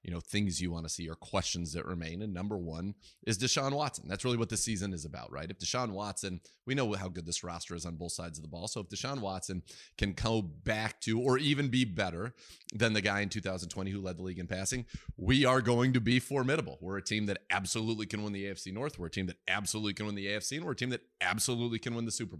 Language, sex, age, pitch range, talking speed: English, male, 30-49, 95-115 Hz, 265 wpm